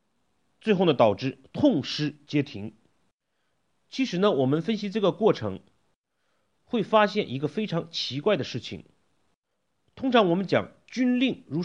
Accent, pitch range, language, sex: native, 135-225 Hz, Chinese, male